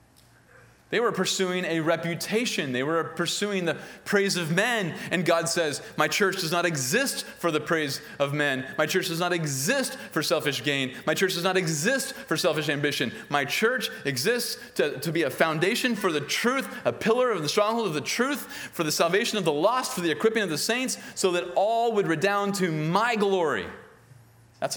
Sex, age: male, 30-49